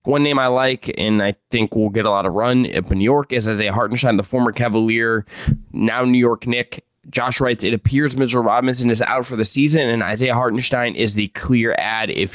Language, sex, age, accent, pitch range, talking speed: English, male, 20-39, American, 105-130 Hz, 230 wpm